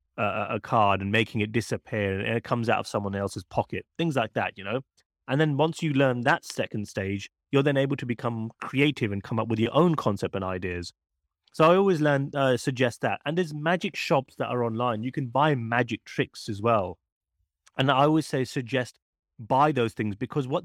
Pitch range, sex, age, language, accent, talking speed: 105-135 Hz, male, 30-49, English, British, 210 wpm